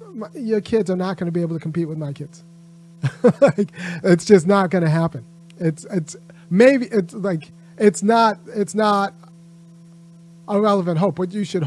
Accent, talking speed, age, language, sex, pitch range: American, 175 wpm, 30-49, English, male, 160-185 Hz